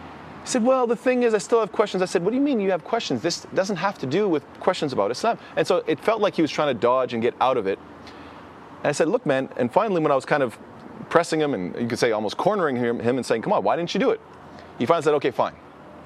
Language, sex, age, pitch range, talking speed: English, male, 30-49, 115-170 Hz, 295 wpm